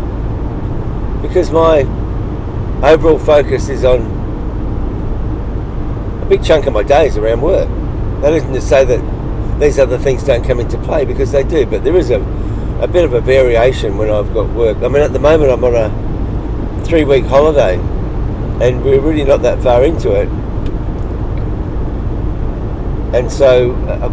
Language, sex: English, male